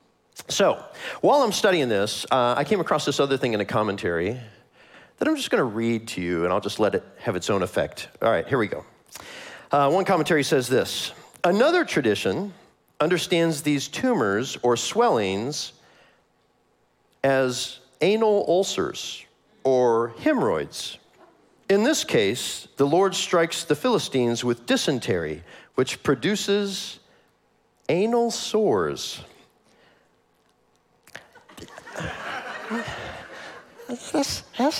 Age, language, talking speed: 40-59, English, 120 wpm